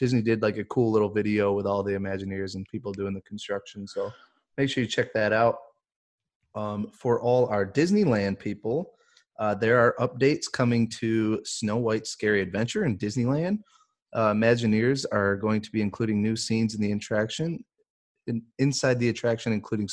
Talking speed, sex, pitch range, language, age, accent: 170 wpm, male, 105-125 Hz, English, 30-49, American